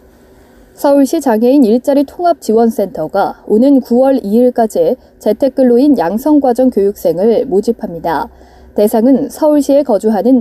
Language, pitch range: Korean, 210-275 Hz